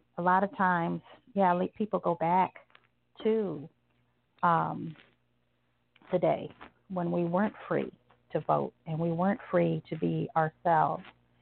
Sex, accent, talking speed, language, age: female, American, 125 wpm, English, 40-59